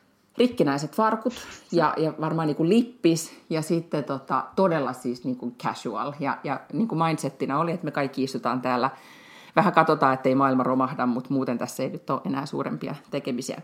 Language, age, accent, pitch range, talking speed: Finnish, 30-49, native, 140-190 Hz, 165 wpm